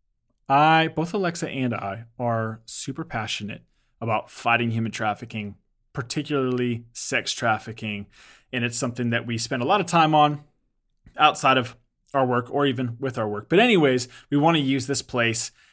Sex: male